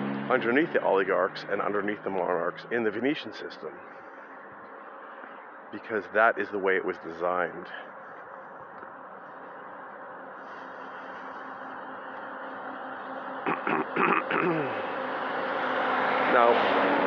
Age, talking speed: 40-59, 70 wpm